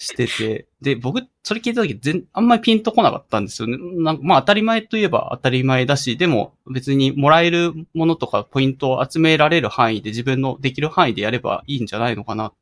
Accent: native